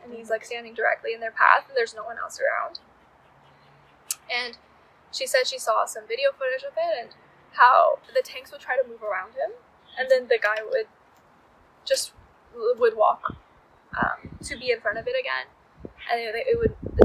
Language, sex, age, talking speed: English, female, 10-29, 195 wpm